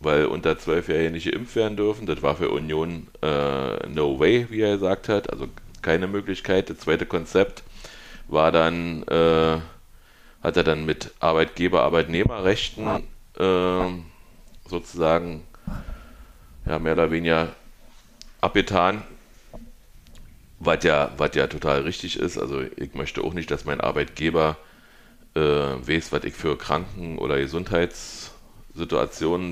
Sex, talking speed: male, 130 wpm